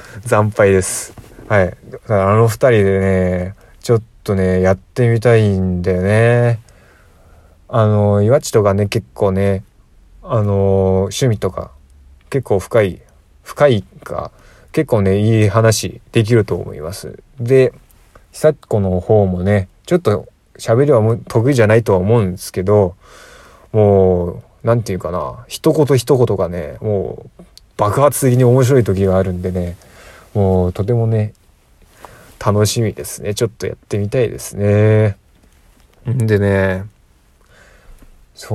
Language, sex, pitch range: Japanese, male, 95-115 Hz